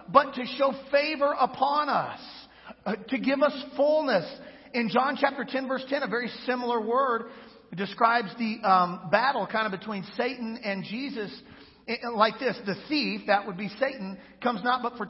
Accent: American